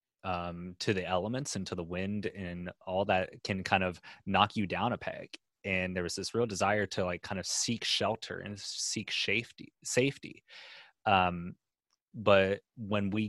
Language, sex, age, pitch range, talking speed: English, male, 30-49, 90-100 Hz, 175 wpm